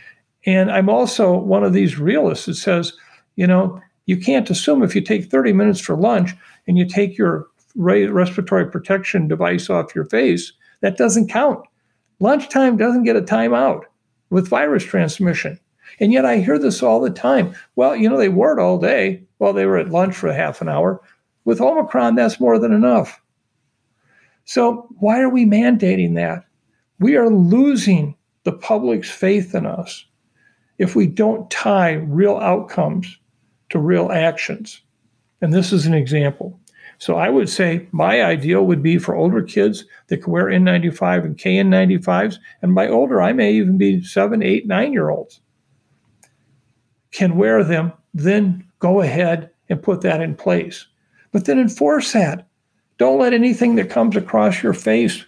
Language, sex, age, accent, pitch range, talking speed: English, male, 60-79, American, 165-210 Hz, 165 wpm